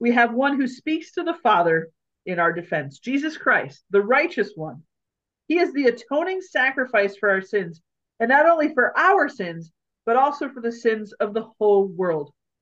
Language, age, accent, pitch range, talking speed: English, 40-59, American, 190-270 Hz, 185 wpm